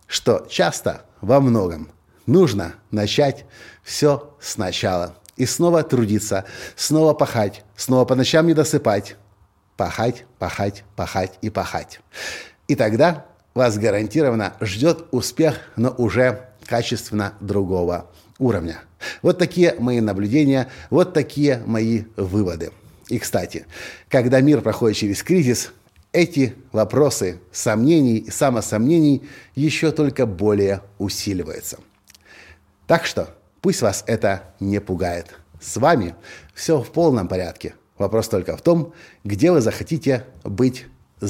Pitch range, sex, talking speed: 100-140 Hz, male, 115 wpm